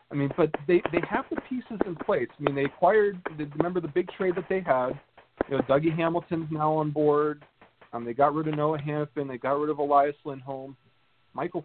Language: English